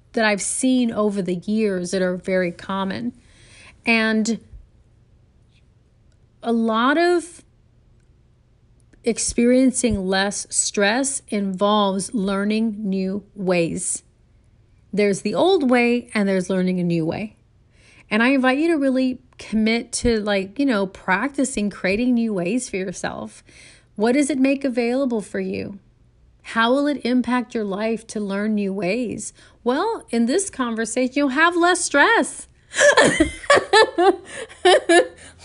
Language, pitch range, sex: English, 190-260 Hz, female